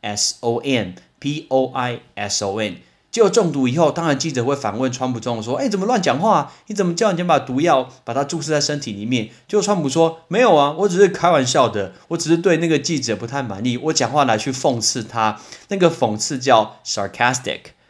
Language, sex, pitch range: Chinese, male, 115-155 Hz